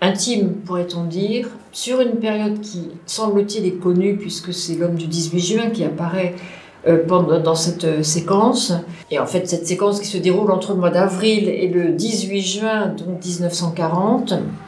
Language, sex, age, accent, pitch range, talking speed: English, female, 50-69, French, 175-215 Hz, 160 wpm